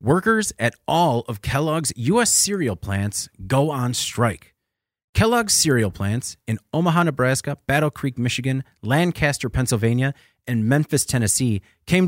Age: 30-49